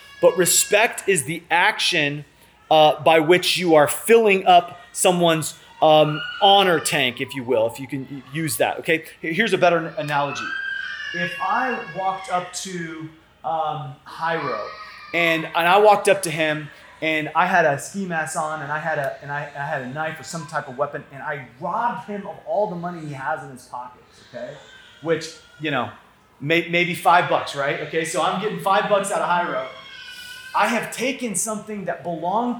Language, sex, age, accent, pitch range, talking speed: English, male, 30-49, American, 155-200 Hz, 190 wpm